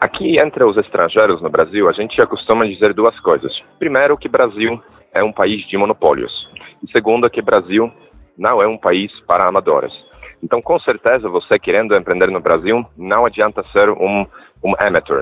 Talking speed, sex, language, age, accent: 180 wpm, male, Portuguese, 30-49, Brazilian